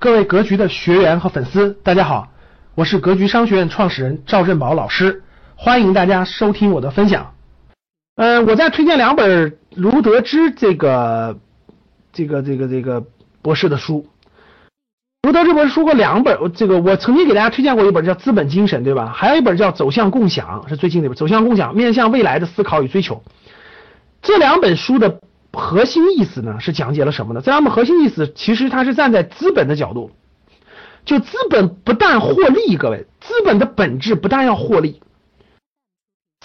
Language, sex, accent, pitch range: Chinese, male, native, 155-250 Hz